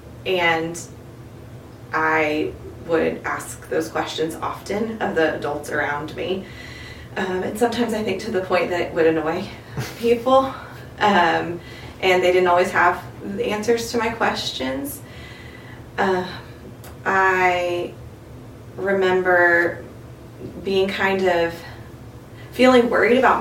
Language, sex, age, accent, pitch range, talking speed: English, female, 20-39, American, 130-185 Hz, 115 wpm